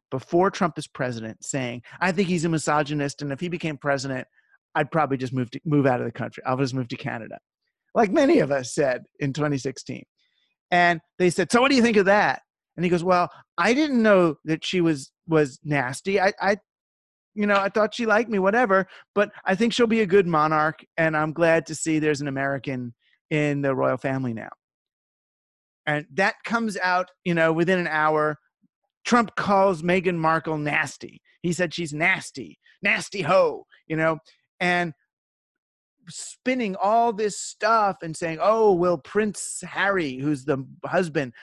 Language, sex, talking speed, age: English, male, 185 wpm, 40-59